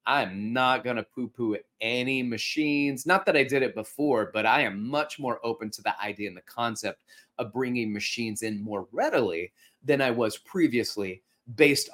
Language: English